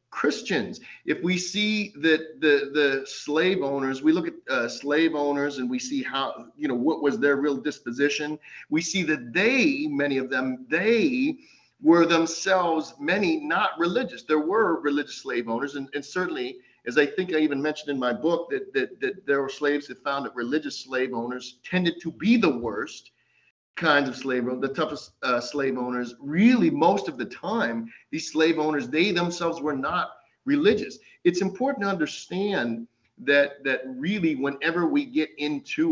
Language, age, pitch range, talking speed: English, 40-59, 135-190 Hz, 175 wpm